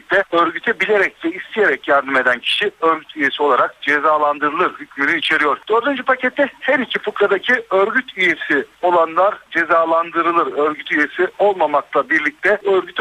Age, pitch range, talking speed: 60-79, 155-205 Hz, 125 wpm